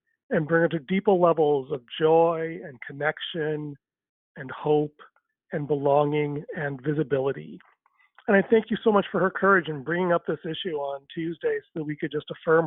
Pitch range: 155-190 Hz